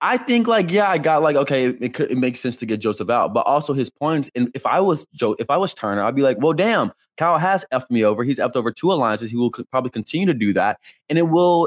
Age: 20-39